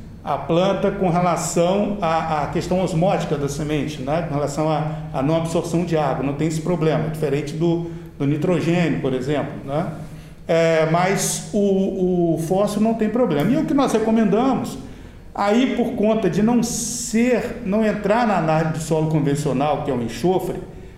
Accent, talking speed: Brazilian, 180 wpm